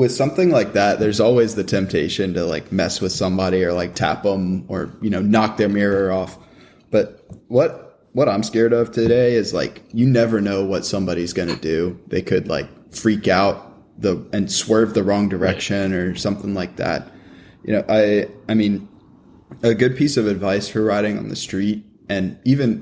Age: 20-39